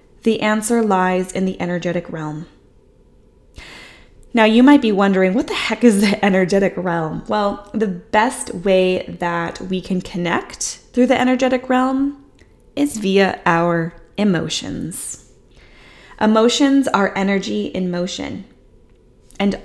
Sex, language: female, English